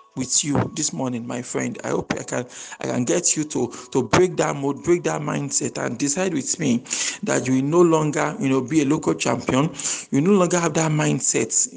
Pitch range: 140-180 Hz